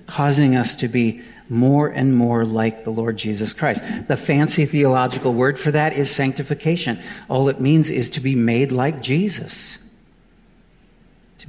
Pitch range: 125-175 Hz